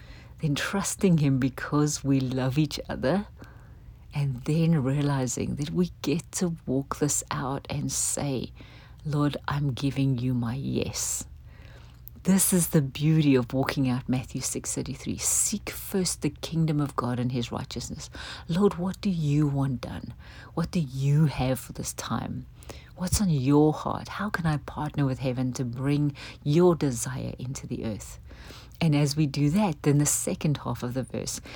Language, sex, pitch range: English, female, 130-160 Hz